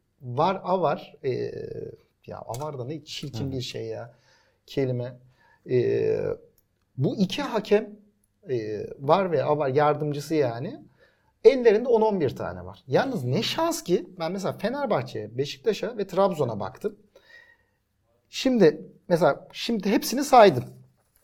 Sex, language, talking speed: male, Turkish, 125 wpm